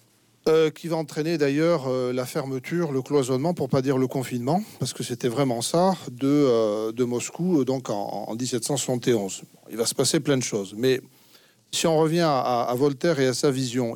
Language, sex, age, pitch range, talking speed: French, male, 40-59, 125-155 Hz, 200 wpm